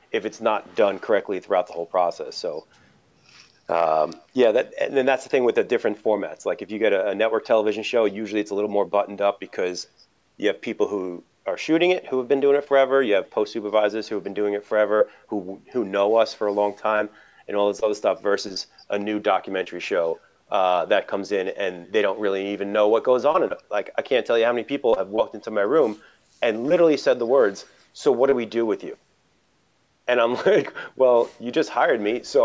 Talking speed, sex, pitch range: 240 wpm, male, 105-140 Hz